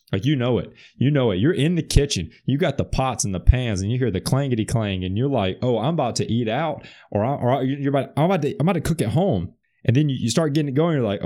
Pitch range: 110-150 Hz